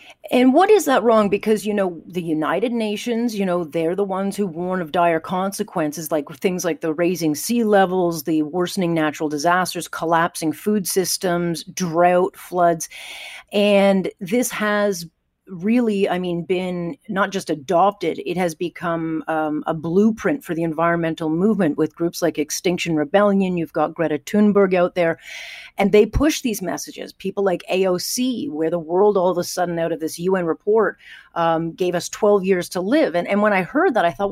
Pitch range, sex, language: 165-205 Hz, female, English